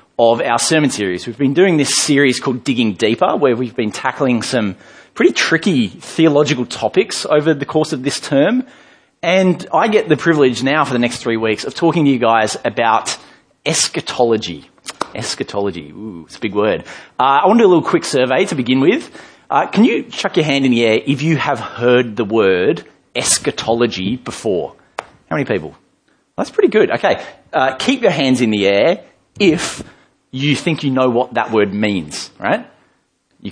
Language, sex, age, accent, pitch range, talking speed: English, male, 30-49, Australian, 120-160 Hz, 190 wpm